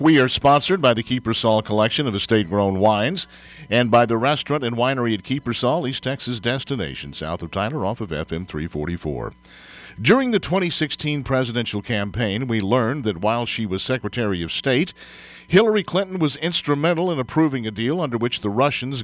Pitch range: 105-145 Hz